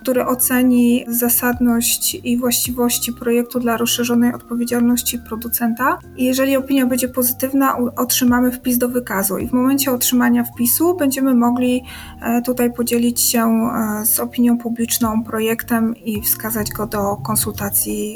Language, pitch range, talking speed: Polish, 235-270 Hz, 120 wpm